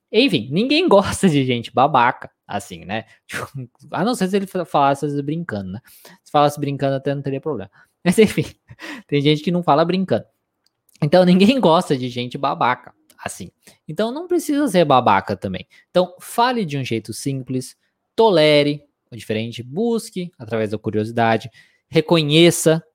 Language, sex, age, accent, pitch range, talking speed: Portuguese, male, 20-39, Brazilian, 120-185 Hz, 150 wpm